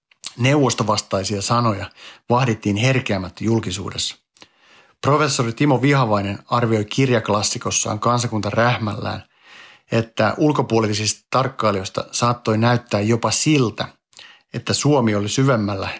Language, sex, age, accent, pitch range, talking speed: Finnish, male, 50-69, native, 105-125 Hz, 85 wpm